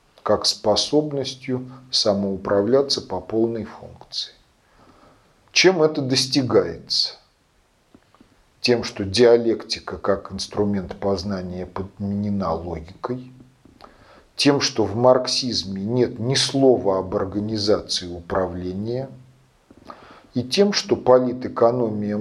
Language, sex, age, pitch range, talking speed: Russian, male, 40-59, 100-125 Hz, 85 wpm